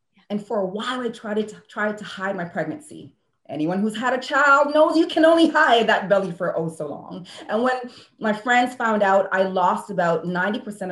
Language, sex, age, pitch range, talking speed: English, female, 30-49, 170-255 Hz, 205 wpm